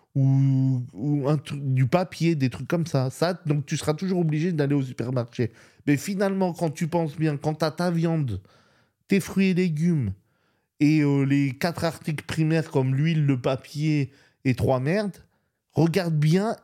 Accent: French